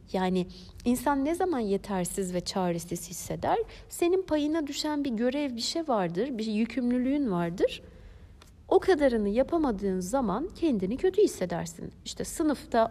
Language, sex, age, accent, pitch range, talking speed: Turkish, female, 60-79, native, 185-275 Hz, 130 wpm